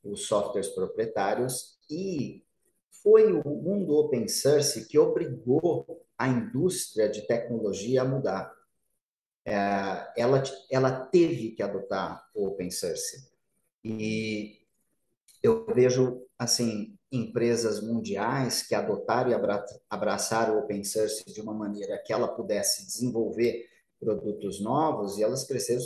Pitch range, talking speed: 110-145 Hz, 115 wpm